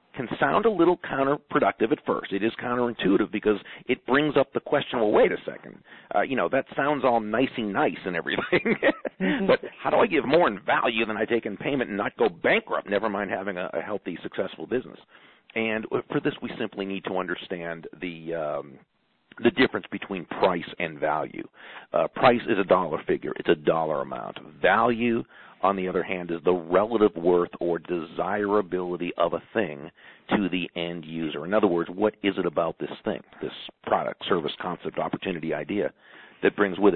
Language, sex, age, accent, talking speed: English, male, 50-69, American, 185 wpm